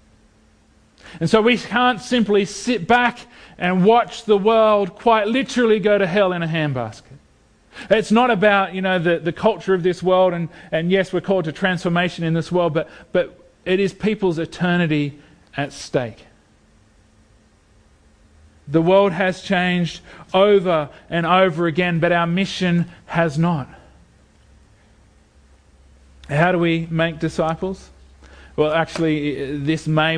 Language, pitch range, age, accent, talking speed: English, 135-175 Hz, 40-59, Australian, 140 wpm